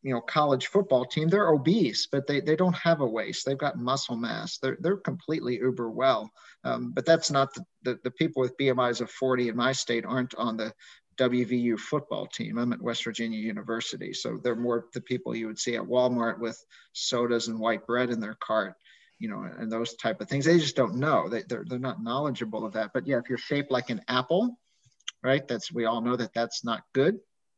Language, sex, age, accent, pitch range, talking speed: English, male, 50-69, American, 120-140 Hz, 220 wpm